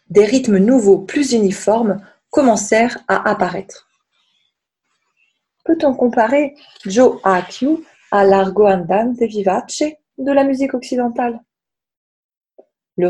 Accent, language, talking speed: French, French, 95 wpm